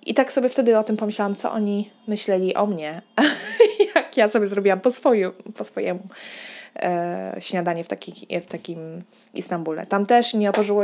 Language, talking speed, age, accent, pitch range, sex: Polish, 170 wpm, 20-39, native, 180-225 Hz, female